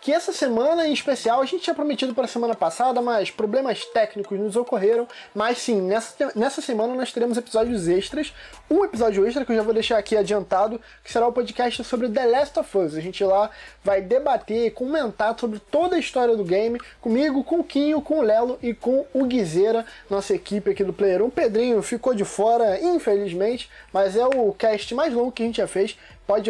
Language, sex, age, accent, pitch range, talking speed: Portuguese, male, 20-39, Brazilian, 215-290 Hz, 215 wpm